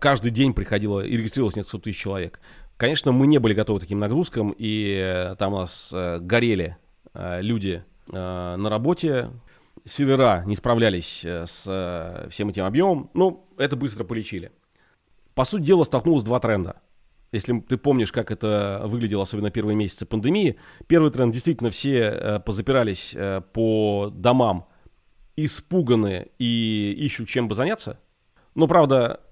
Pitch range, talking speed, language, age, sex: 100-140 Hz, 135 wpm, Russian, 30-49, male